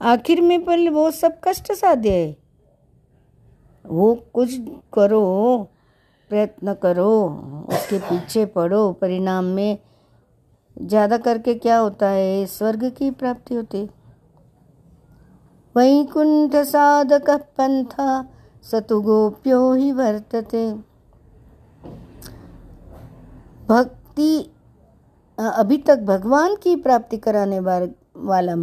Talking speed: 90 wpm